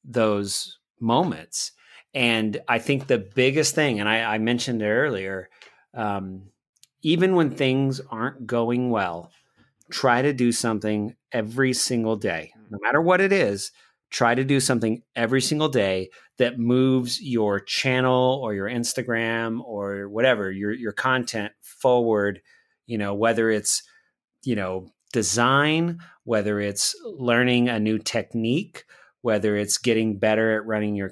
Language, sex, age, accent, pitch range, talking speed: English, male, 30-49, American, 105-125 Hz, 140 wpm